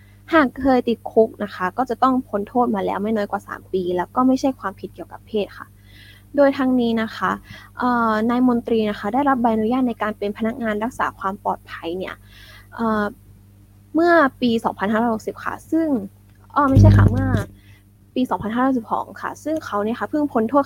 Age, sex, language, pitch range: 10-29, female, Thai, 190-255 Hz